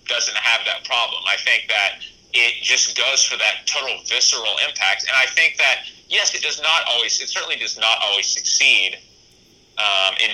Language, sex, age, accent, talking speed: English, male, 30-49, American, 185 wpm